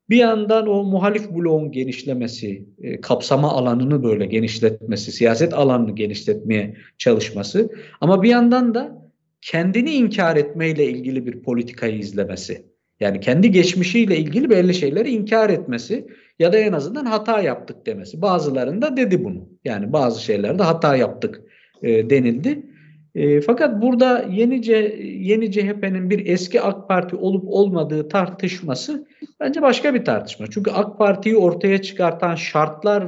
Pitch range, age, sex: 145-215 Hz, 50-69, male